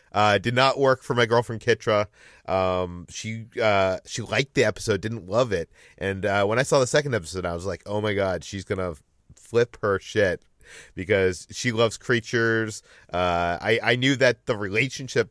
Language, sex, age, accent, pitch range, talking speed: English, male, 30-49, American, 95-120 Hz, 190 wpm